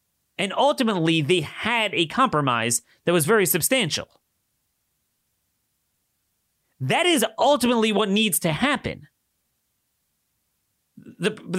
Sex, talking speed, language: male, 95 wpm, English